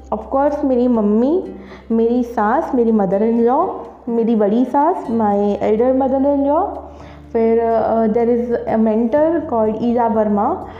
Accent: native